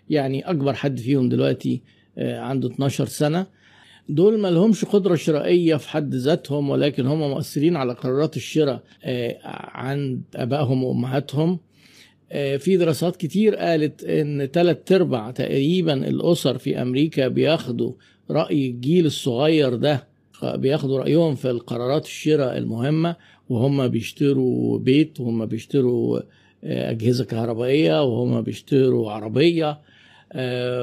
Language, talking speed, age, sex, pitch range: Arabic, 110 wpm, 50-69, male, 125-155 Hz